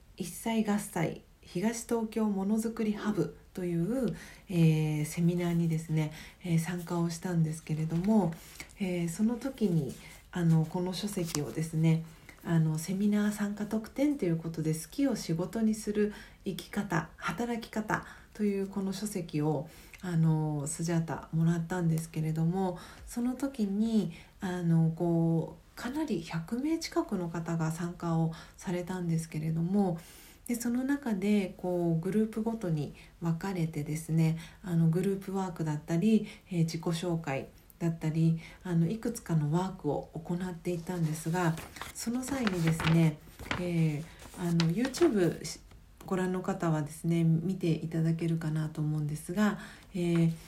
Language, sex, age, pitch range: Japanese, female, 40-59, 165-205 Hz